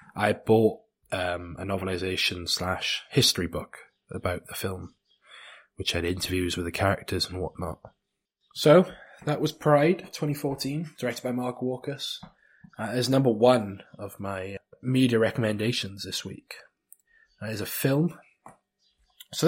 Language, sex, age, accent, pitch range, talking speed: English, male, 20-39, British, 95-130 Hz, 135 wpm